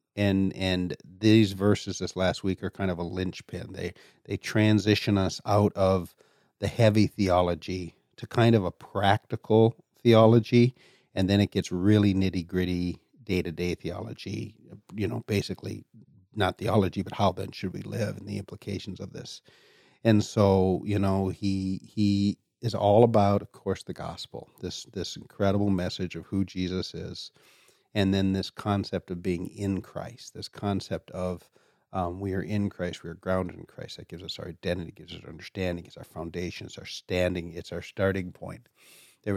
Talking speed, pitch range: 170 wpm, 90-105 Hz